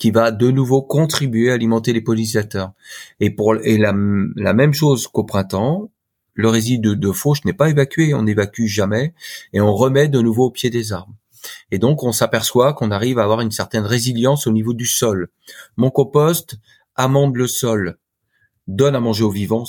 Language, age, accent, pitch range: French, 40-59, French, 105-135 Hz